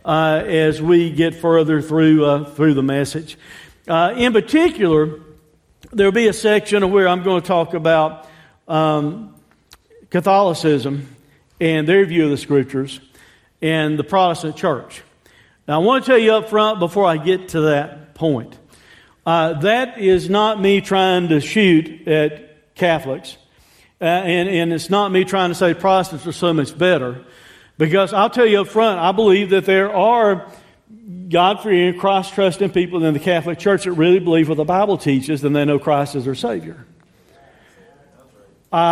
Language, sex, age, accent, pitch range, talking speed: English, male, 50-69, American, 155-200 Hz, 170 wpm